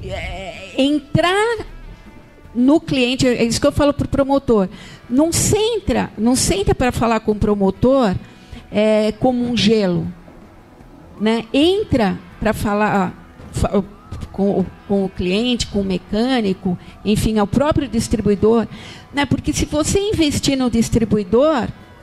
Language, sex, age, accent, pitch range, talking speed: Portuguese, female, 50-69, Brazilian, 220-290 Hz, 130 wpm